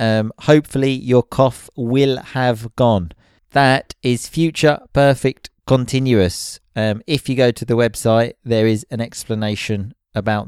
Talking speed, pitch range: 135 wpm, 100-120 Hz